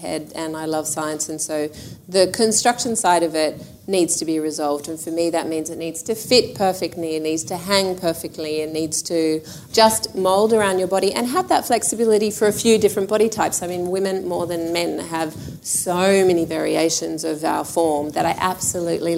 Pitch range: 160-190 Hz